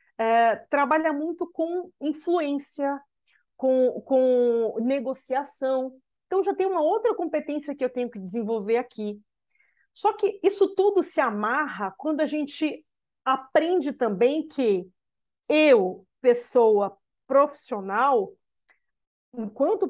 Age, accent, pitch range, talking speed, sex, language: 40-59, Brazilian, 235-330 Hz, 105 wpm, female, Portuguese